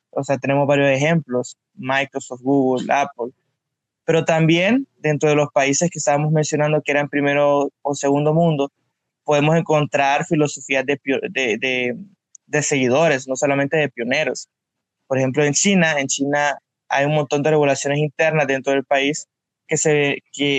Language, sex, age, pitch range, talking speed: Spanish, male, 20-39, 135-155 Hz, 145 wpm